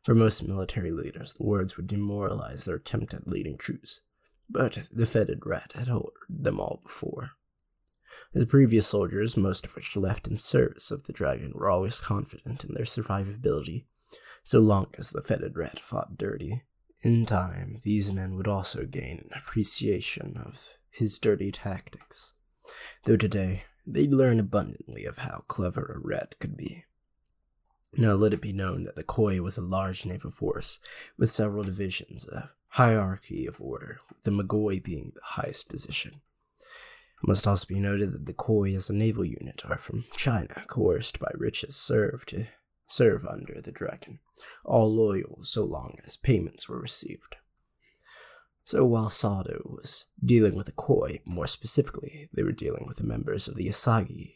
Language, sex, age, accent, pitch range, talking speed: English, male, 20-39, American, 95-115 Hz, 165 wpm